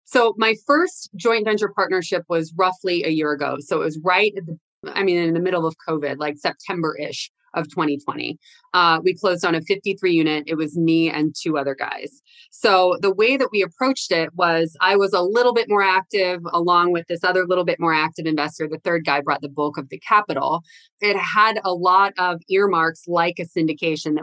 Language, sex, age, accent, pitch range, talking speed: English, female, 20-39, American, 160-195 Hz, 200 wpm